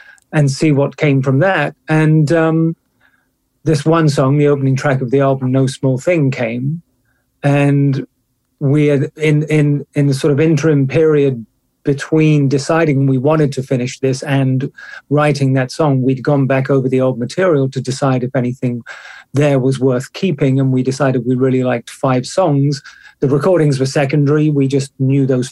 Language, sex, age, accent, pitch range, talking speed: English, male, 30-49, British, 130-150 Hz, 170 wpm